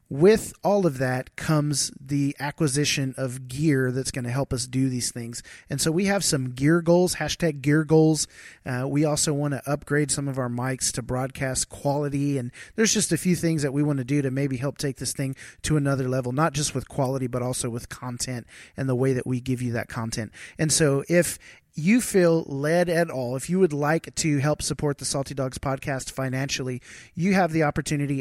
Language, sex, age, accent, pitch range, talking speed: English, male, 30-49, American, 135-160 Hz, 215 wpm